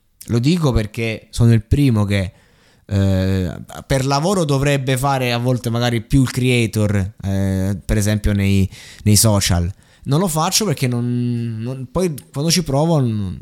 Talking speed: 140 wpm